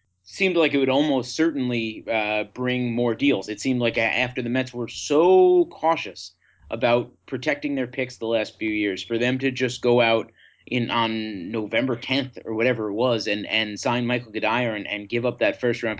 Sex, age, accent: male, 30-49, American